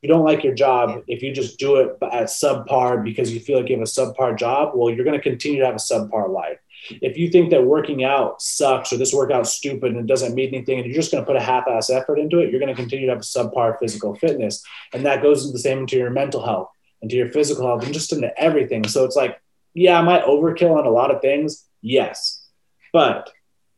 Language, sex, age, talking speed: English, male, 20-39, 255 wpm